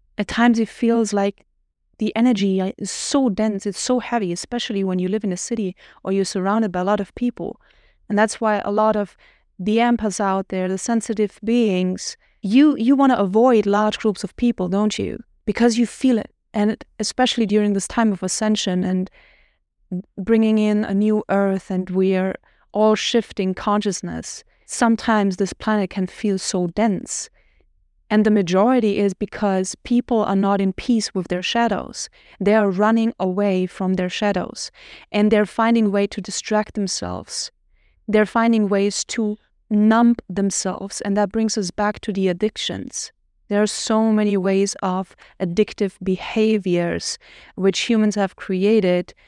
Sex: female